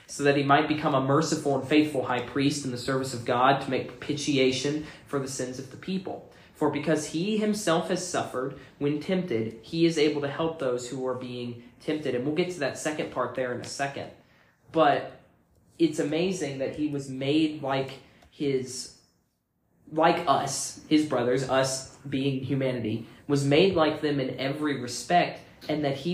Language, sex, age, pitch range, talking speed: English, male, 20-39, 130-155 Hz, 185 wpm